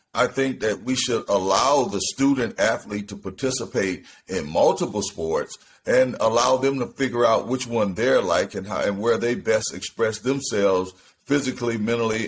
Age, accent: 40-59, American